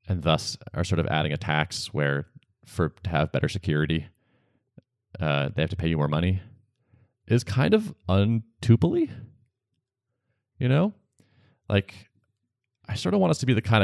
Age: 30-49